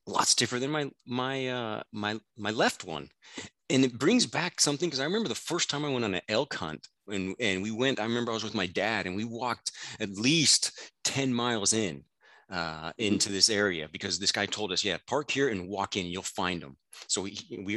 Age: 30-49